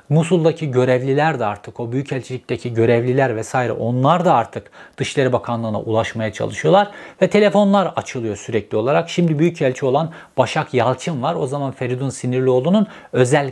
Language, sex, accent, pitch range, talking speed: Turkish, male, native, 125-170 Hz, 140 wpm